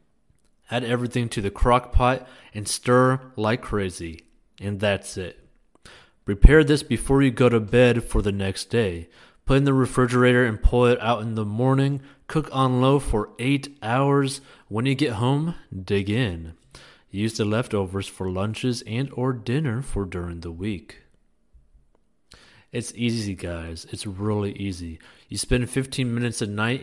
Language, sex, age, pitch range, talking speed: English, male, 30-49, 100-135 Hz, 160 wpm